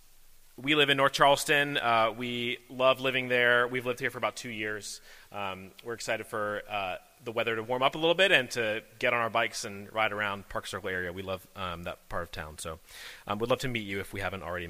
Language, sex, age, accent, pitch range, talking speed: English, male, 30-49, American, 115-155 Hz, 245 wpm